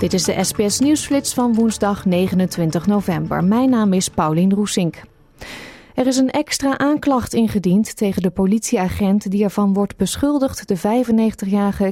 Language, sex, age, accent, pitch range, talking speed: Dutch, female, 30-49, Dutch, 185-225 Hz, 140 wpm